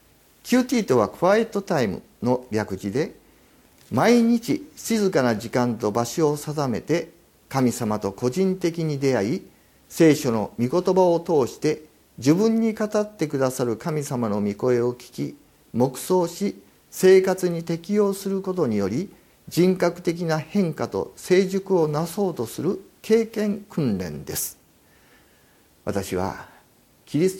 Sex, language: male, Japanese